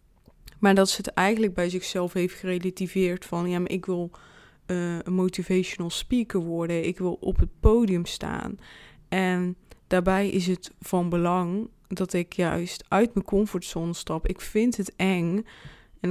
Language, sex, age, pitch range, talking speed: Dutch, female, 20-39, 180-205 Hz, 160 wpm